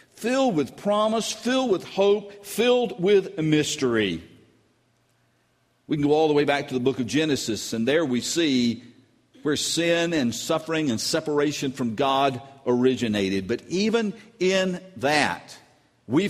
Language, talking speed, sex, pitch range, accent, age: English, 145 wpm, male, 115-155 Hz, American, 50-69